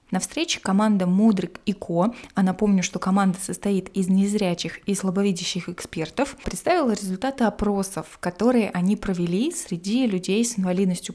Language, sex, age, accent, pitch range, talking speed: Russian, female, 20-39, native, 185-225 Hz, 140 wpm